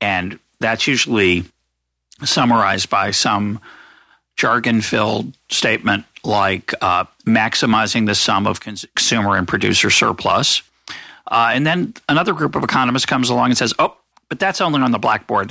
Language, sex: English, male